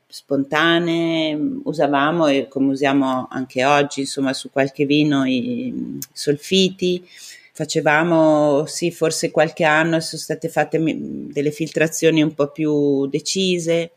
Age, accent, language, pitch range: 30-49, native, Italian, 150-180 Hz